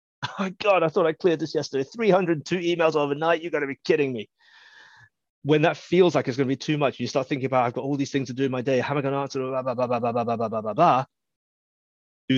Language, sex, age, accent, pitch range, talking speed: English, male, 30-49, British, 115-140 Hz, 235 wpm